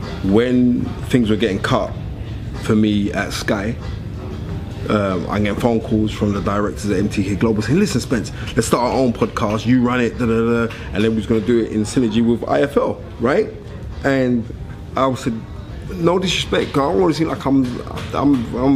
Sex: male